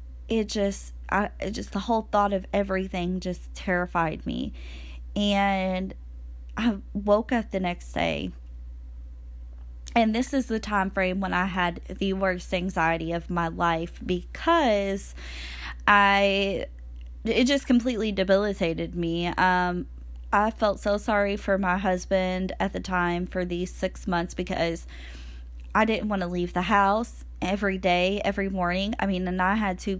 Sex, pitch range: female, 170-205 Hz